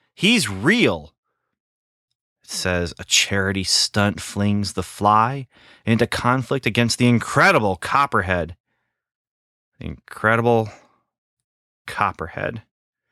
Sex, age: male, 30-49